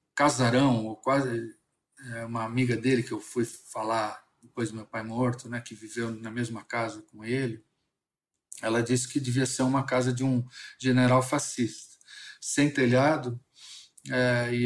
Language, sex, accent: Portuguese, male, Brazilian